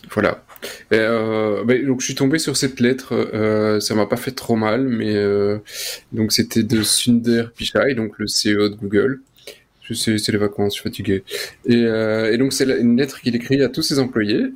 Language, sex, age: French, male, 20-39